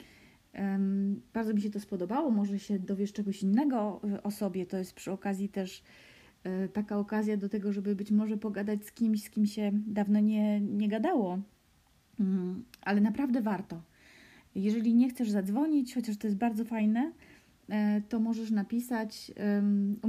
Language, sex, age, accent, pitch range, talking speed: Polish, female, 30-49, native, 200-235 Hz, 150 wpm